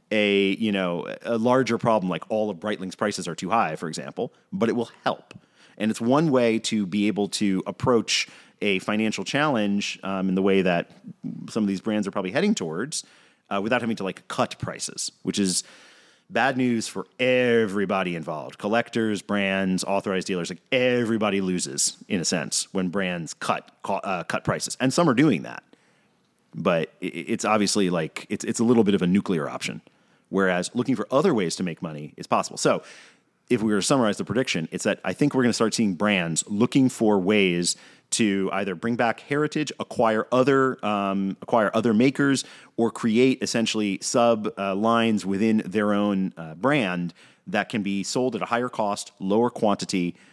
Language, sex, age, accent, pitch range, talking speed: English, male, 30-49, American, 95-115 Hz, 185 wpm